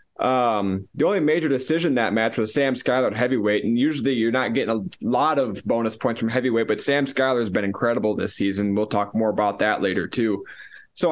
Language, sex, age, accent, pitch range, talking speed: English, male, 20-39, American, 110-145 Hz, 210 wpm